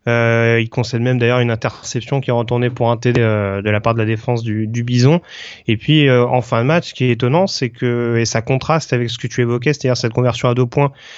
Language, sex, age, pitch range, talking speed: French, male, 30-49, 120-145 Hz, 280 wpm